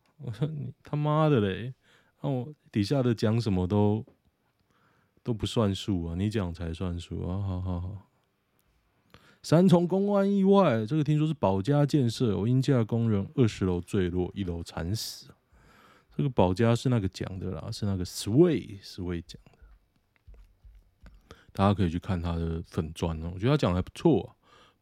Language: Chinese